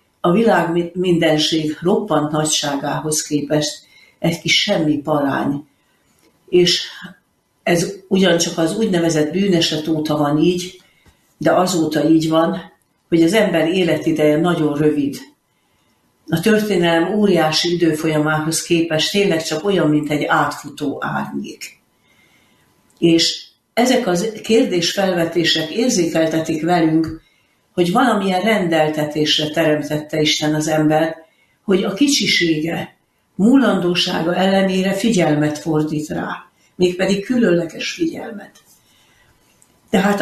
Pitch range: 155-195 Hz